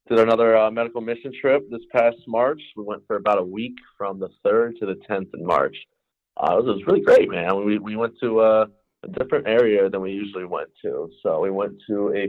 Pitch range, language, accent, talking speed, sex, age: 100-140 Hz, English, American, 240 wpm, male, 30-49